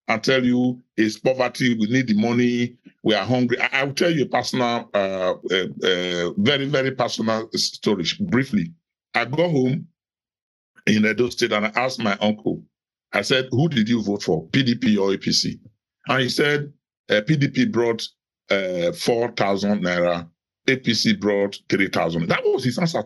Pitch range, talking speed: 105-150 Hz, 160 wpm